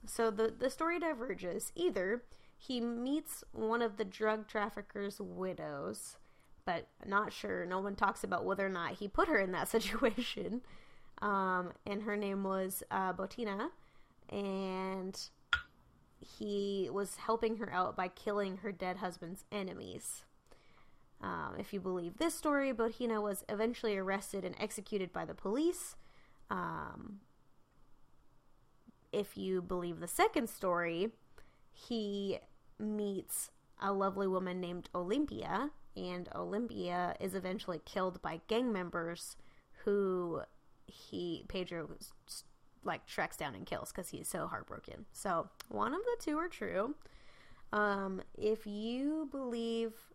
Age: 20-39